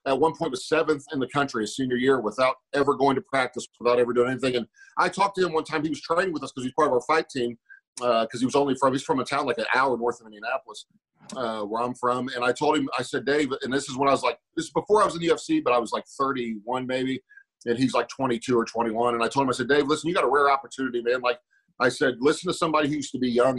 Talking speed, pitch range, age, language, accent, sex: 305 wpm, 125-155 Hz, 40-59, English, American, male